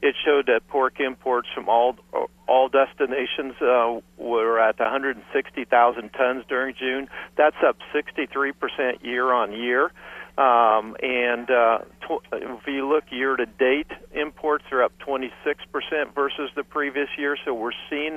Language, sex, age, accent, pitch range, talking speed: English, male, 50-69, American, 120-145 Hz, 130 wpm